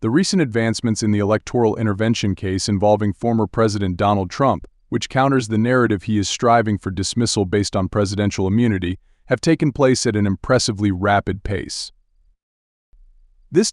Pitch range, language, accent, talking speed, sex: 100-125 Hz, English, American, 155 wpm, male